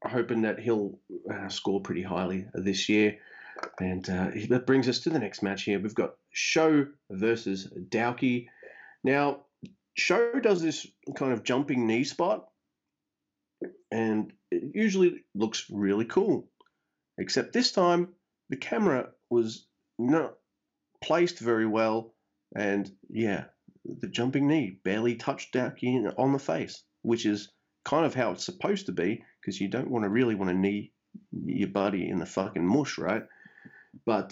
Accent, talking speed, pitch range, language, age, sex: Australian, 150 wpm, 100-145 Hz, English, 30-49, male